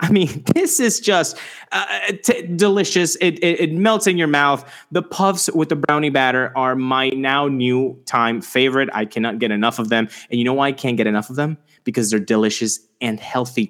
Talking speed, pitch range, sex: 210 wpm, 125-175 Hz, male